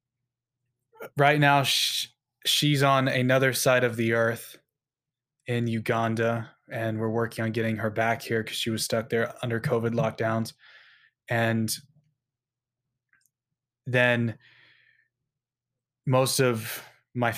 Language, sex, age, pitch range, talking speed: English, male, 20-39, 115-130 Hz, 110 wpm